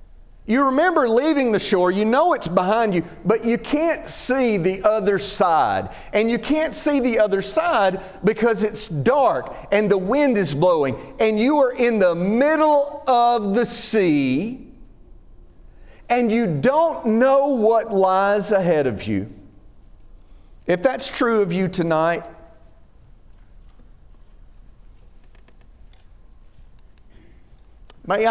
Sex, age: male, 40-59